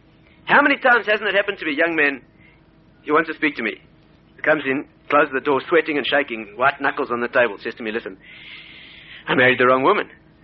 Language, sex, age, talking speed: English, male, 40-59, 225 wpm